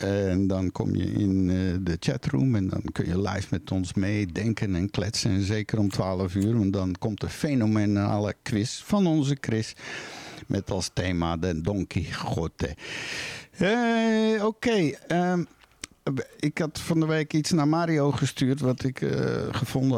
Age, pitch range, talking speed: 60-79, 100-130 Hz, 160 wpm